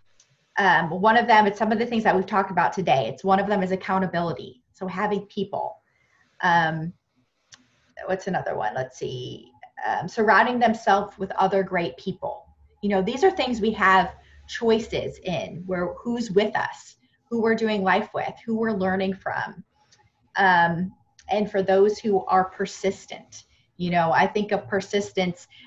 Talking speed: 165 wpm